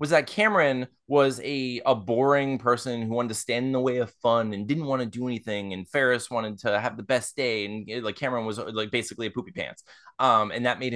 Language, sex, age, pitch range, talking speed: English, male, 20-39, 120-180 Hz, 240 wpm